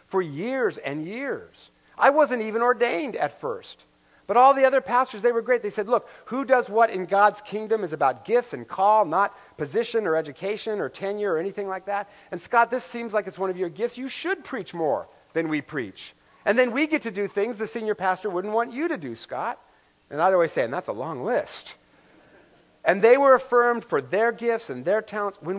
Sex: male